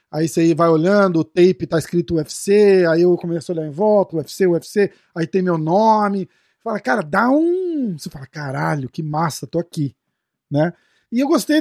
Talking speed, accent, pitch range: 190 wpm, Brazilian, 165-220 Hz